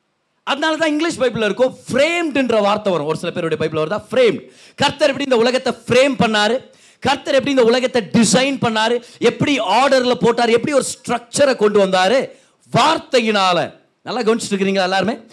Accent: native